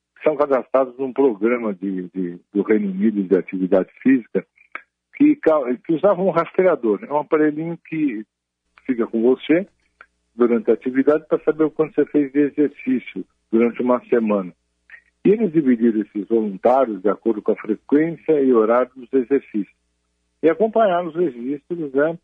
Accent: Brazilian